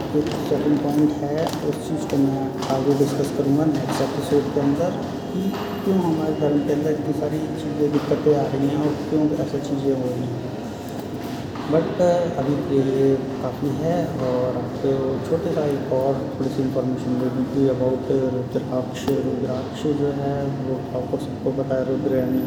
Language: Hindi